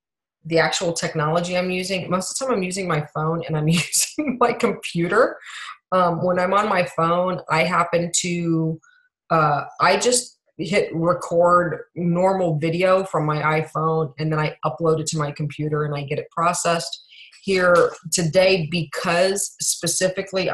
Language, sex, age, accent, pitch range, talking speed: English, female, 20-39, American, 160-195 Hz, 160 wpm